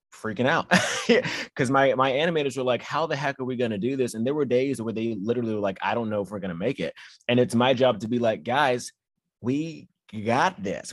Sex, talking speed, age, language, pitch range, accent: male, 260 wpm, 30-49, English, 115-145 Hz, American